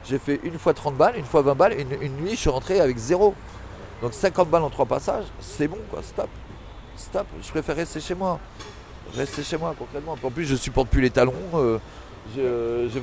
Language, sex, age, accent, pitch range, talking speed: French, male, 40-59, French, 115-155 Hz, 215 wpm